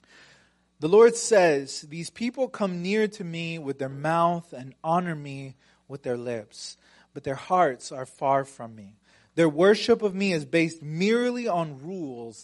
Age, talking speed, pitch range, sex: 30-49, 165 wpm, 135-195 Hz, male